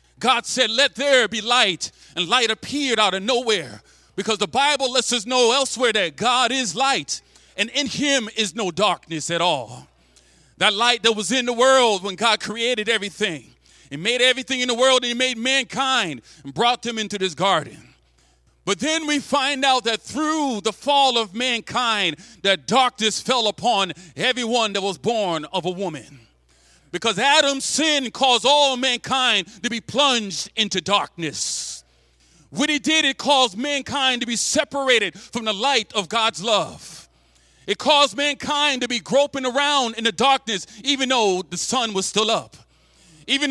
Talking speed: 170 wpm